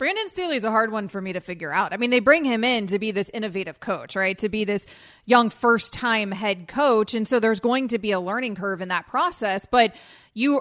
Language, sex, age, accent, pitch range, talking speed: English, female, 30-49, American, 215-270 Hz, 250 wpm